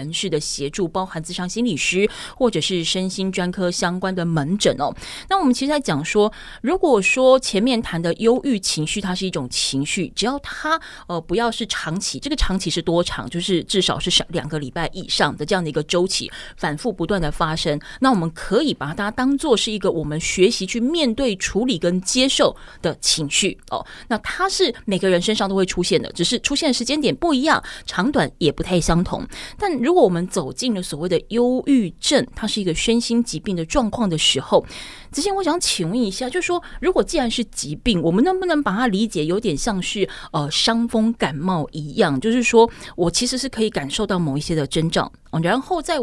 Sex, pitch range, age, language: female, 170-240 Hz, 20-39, Chinese